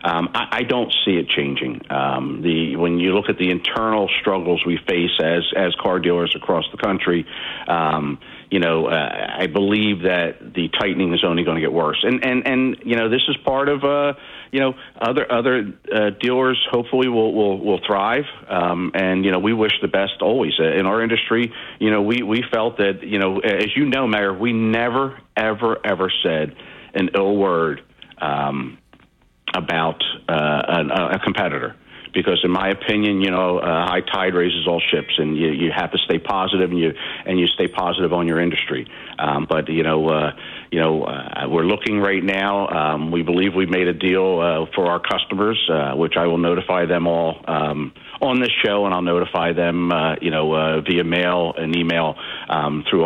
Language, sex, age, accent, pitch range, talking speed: English, male, 50-69, American, 85-110 Hz, 200 wpm